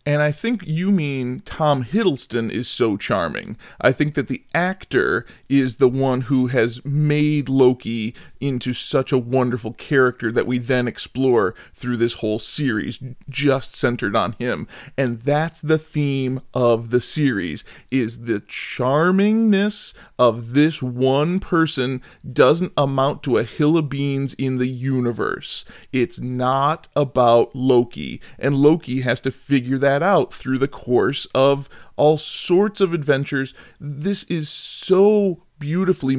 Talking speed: 145 wpm